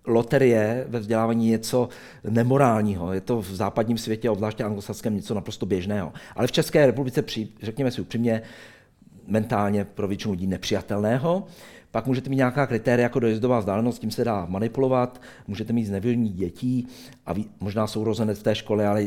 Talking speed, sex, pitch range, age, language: 170 wpm, male, 105-125 Hz, 50-69, Czech